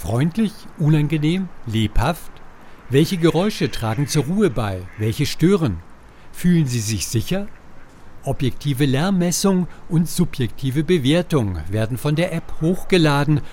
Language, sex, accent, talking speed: German, male, German, 110 wpm